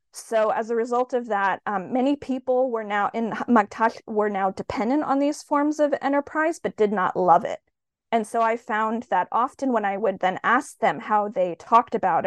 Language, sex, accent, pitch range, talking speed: English, female, American, 200-235 Hz, 205 wpm